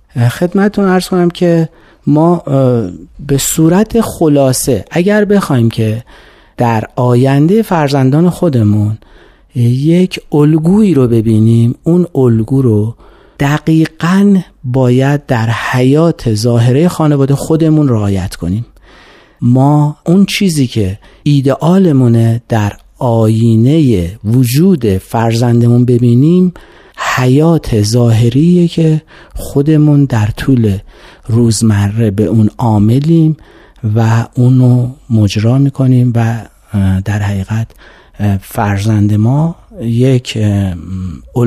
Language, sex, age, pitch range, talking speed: Persian, male, 40-59, 110-150 Hz, 90 wpm